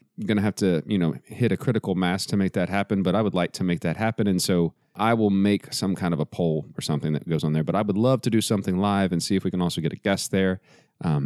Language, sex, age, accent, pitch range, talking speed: English, male, 30-49, American, 85-115 Hz, 305 wpm